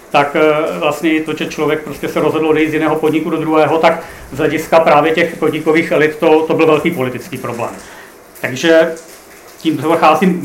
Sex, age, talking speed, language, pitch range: male, 40-59, 180 wpm, Czech, 155-170 Hz